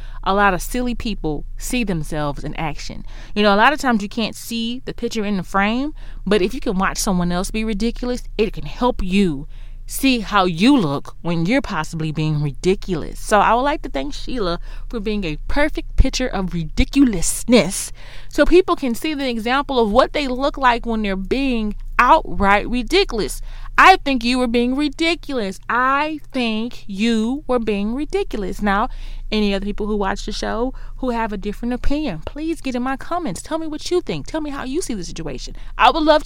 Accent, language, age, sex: American, English, 30-49, female